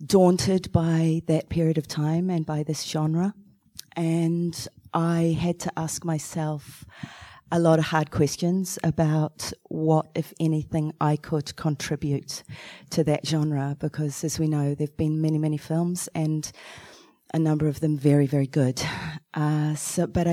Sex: female